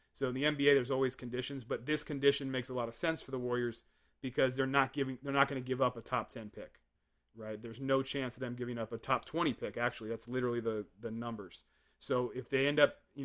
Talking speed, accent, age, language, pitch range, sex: 250 wpm, American, 30-49, English, 120-135 Hz, male